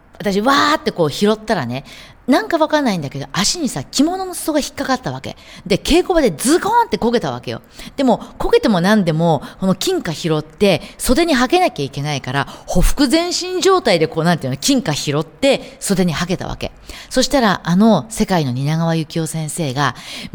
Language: Japanese